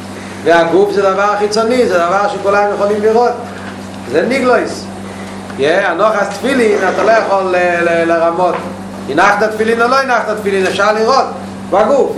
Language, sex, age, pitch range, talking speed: Hebrew, male, 40-59, 185-225 Hz, 130 wpm